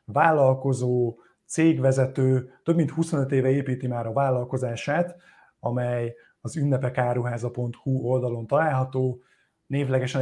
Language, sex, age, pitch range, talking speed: Hungarian, male, 30-49, 125-140 Hz, 95 wpm